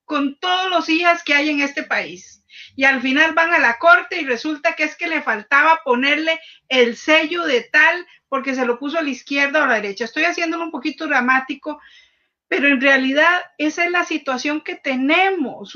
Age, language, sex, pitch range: 40-59, Spanish, female, 240-330 Hz